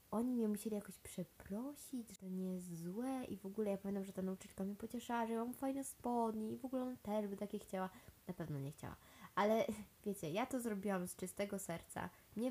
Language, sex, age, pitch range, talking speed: Polish, female, 20-39, 180-210 Hz, 215 wpm